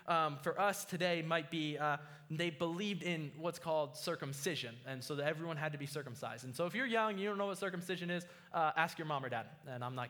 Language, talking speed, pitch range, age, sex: English, 245 wpm, 150-200 Hz, 20-39, male